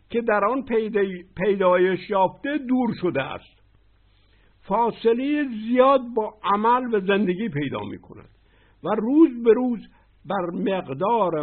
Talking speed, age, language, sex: 115 wpm, 60-79, Persian, male